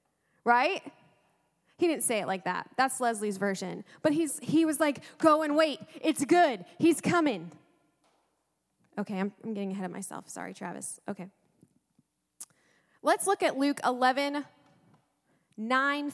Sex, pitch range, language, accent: female, 205-280 Hz, English, American